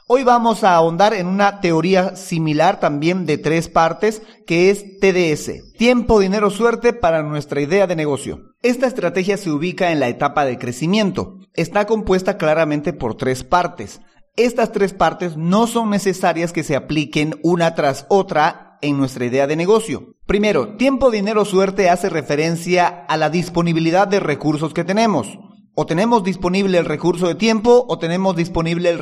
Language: Spanish